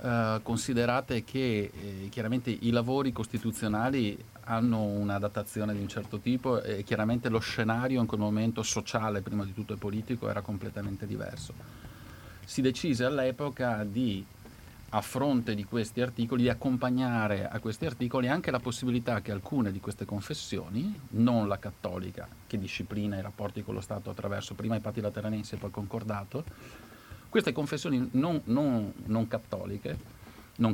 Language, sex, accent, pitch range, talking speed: Italian, male, native, 105-125 Hz, 150 wpm